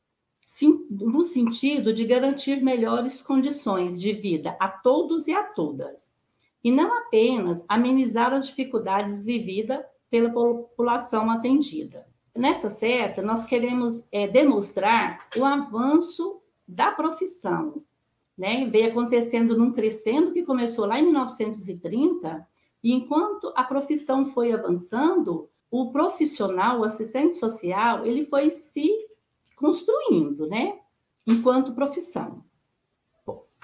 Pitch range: 220-285 Hz